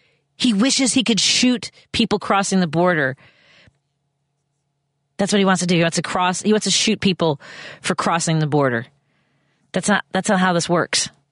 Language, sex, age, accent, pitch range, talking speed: English, female, 40-59, American, 140-180 Hz, 185 wpm